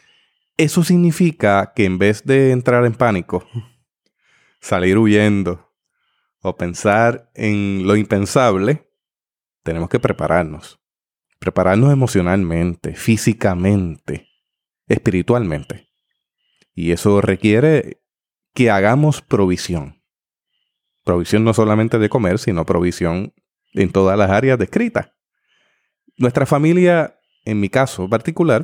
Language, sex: Spanish, male